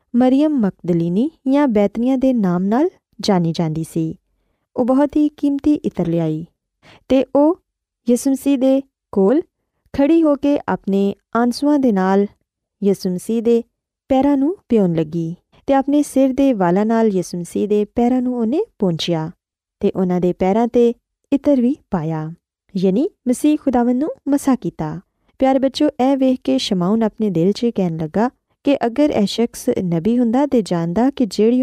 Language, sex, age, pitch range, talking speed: Urdu, female, 20-39, 185-270 Hz, 125 wpm